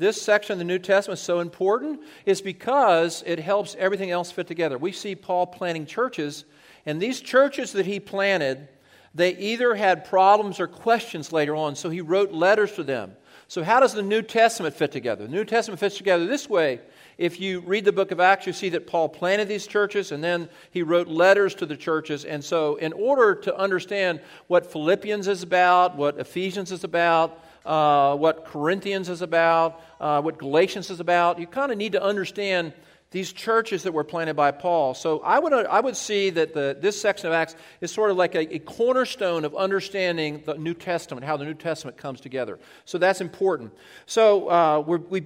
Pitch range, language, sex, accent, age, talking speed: 165-200 Hz, English, male, American, 50-69, 205 wpm